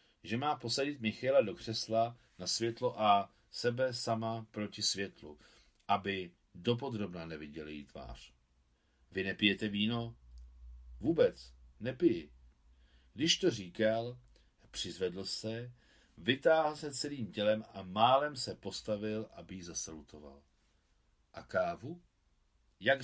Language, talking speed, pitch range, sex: Czech, 110 wpm, 85-125 Hz, male